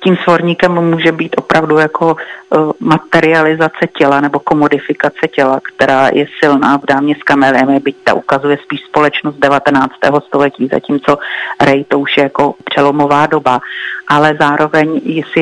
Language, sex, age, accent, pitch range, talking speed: Czech, female, 40-59, native, 140-160 Hz, 145 wpm